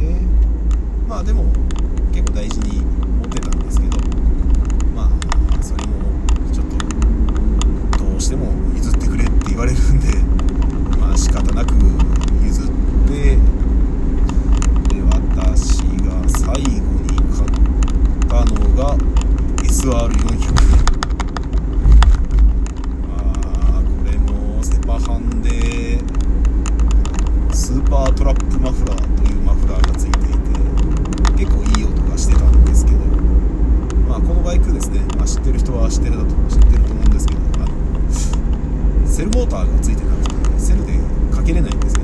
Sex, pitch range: male, 65-70 Hz